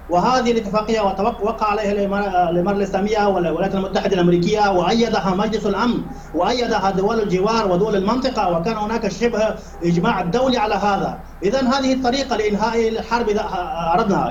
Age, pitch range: 30-49, 195-235 Hz